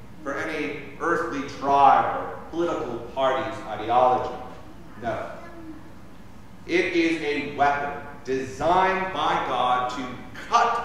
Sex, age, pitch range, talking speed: male, 40-59, 135-180 Hz, 100 wpm